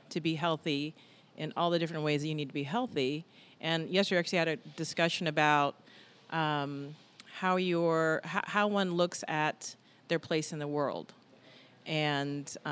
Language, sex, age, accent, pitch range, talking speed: English, female, 40-59, American, 150-180 Hz, 155 wpm